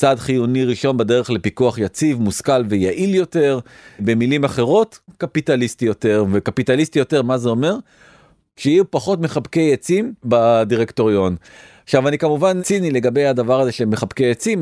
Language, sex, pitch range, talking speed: Hebrew, male, 115-155 Hz, 130 wpm